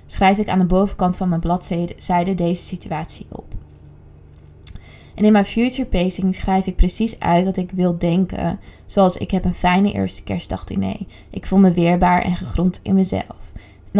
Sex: female